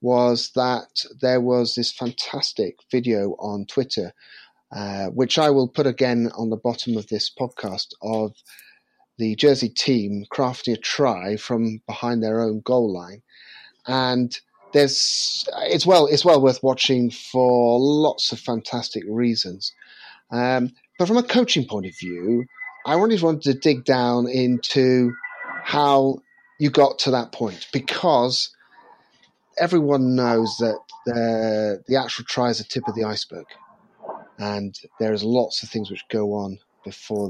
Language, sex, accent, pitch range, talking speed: English, male, British, 110-135 Hz, 150 wpm